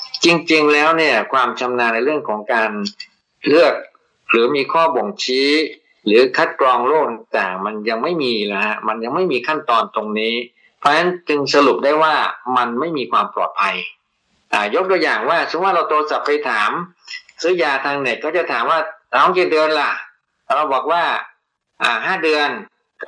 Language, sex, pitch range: Thai, male, 120-160 Hz